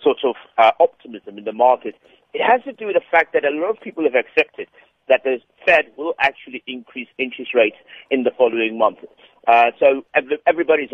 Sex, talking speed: male, 195 wpm